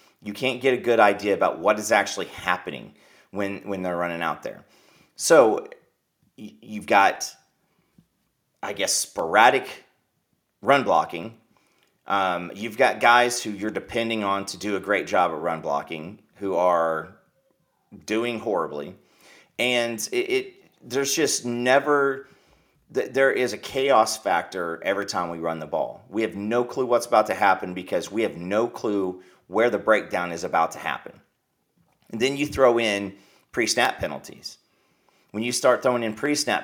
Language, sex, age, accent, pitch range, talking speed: English, male, 30-49, American, 100-130 Hz, 155 wpm